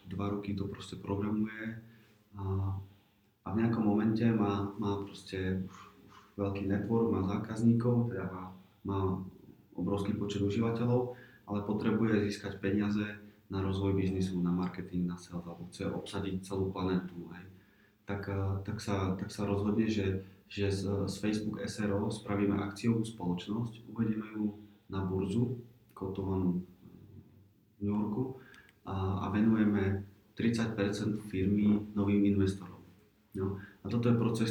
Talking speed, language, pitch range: 120 wpm, Czech, 95-105 Hz